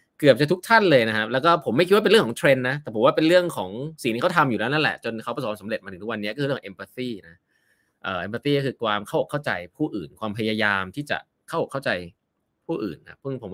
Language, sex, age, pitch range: Thai, male, 20-39, 110-165 Hz